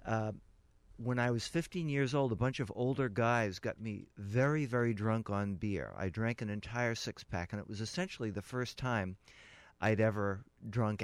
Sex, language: male, English